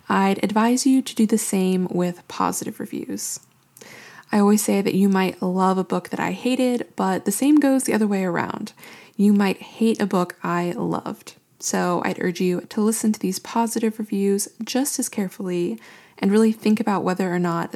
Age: 20-39